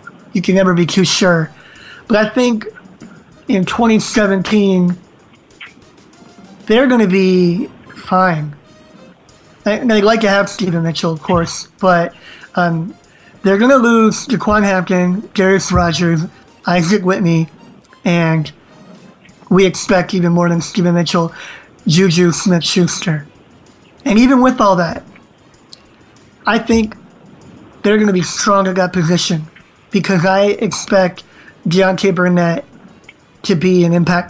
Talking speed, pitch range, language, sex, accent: 120 wpm, 175-200 Hz, English, male, American